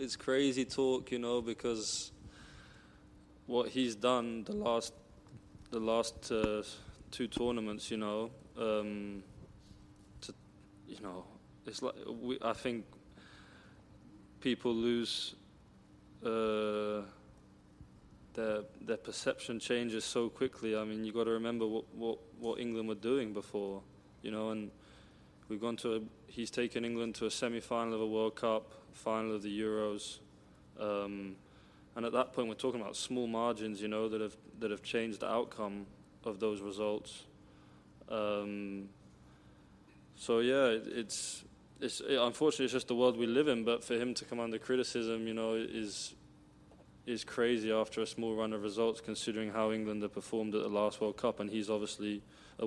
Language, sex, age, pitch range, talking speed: English, male, 20-39, 105-115 Hz, 160 wpm